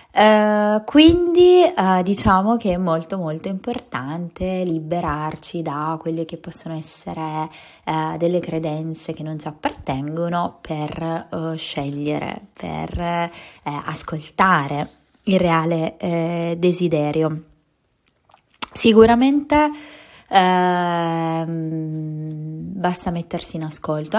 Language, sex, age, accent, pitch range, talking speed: Italian, female, 20-39, native, 160-185 Hz, 80 wpm